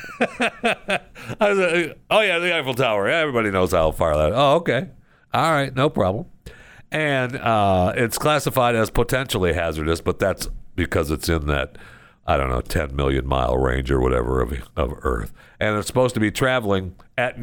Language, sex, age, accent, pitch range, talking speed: English, male, 60-79, American, 70-105 Hz, 170 wpm